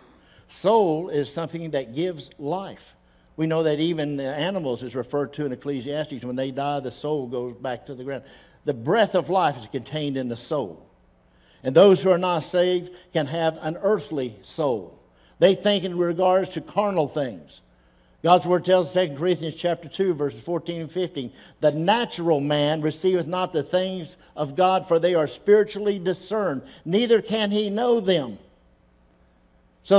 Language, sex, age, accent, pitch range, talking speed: English, male, 60-79, American, 140-185 Hz, 170 wpm